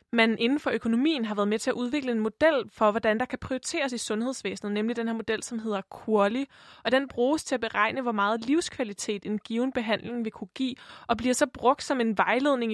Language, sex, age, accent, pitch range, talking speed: Danish, female, 20-39, native, 205-250 Hz, 225 wpm